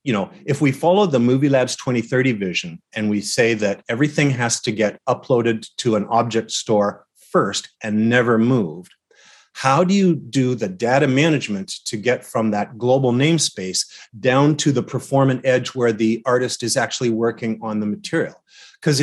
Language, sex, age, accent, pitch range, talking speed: English, male, 40-59, American, 115-140 Hz, 170 wpm